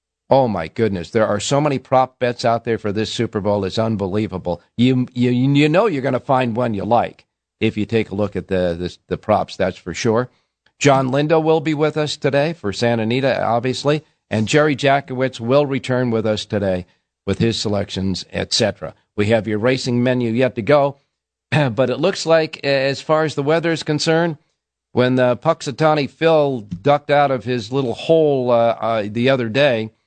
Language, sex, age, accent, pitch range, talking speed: English, male, 50-69, American, 110-145 Hz, 195 wpm